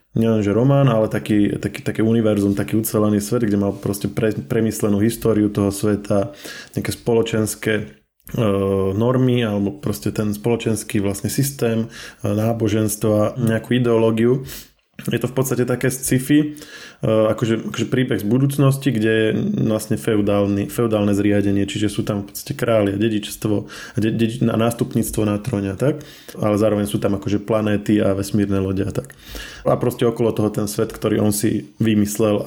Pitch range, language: 105-115 Hz, Slovak